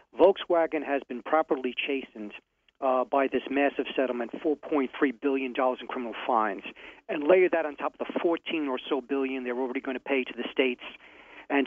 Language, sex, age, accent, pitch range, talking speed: English, male, 40-59, American, 130-150 Hz, 180 wpm